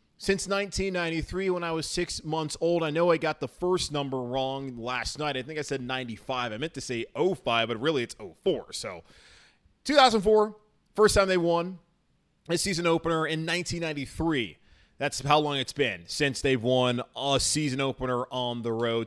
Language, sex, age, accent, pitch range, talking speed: English, male, 20-39, American, 125-180 Hz, 180 wpm